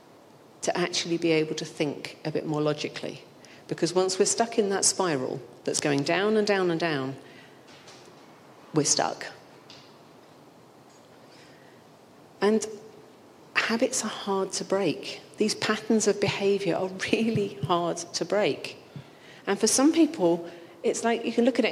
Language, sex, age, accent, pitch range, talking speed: English, female, 40-59, British, 165-215 Hz, 145 wpm